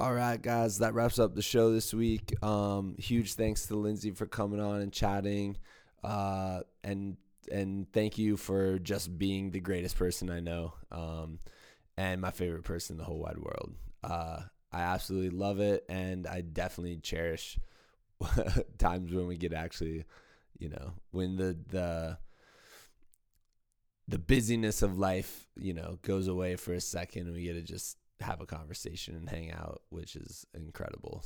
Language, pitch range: English, 90-105 Hz